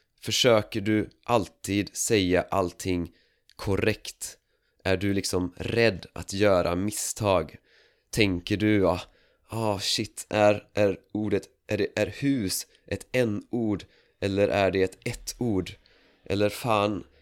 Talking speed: 120 wpm